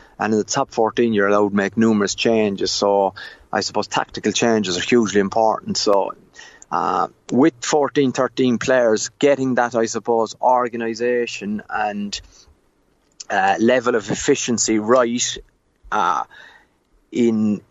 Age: 30-49